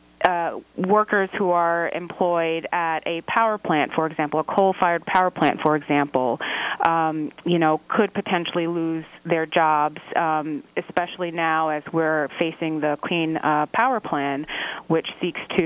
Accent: American